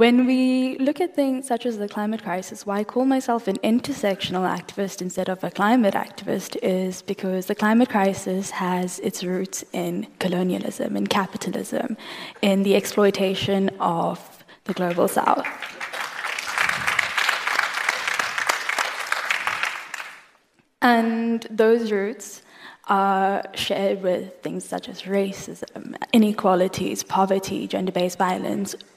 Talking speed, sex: 115 wpm, female